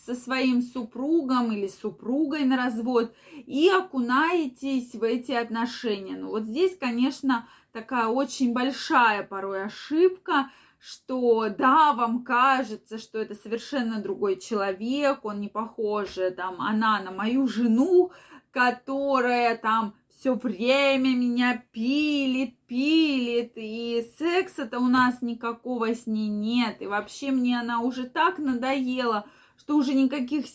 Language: Russian